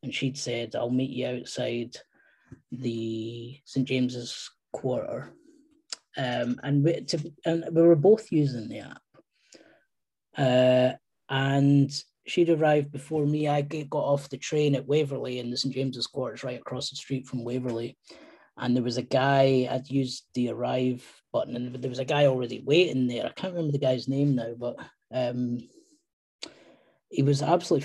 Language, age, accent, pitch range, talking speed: English, 30-49, British, 130-160 Hz, 165 wpm